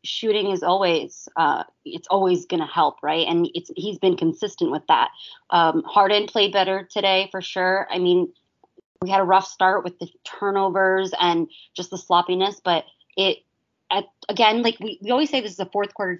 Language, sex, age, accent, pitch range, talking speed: English, female, 20-39, American, 175-210 Hz, 180 wpm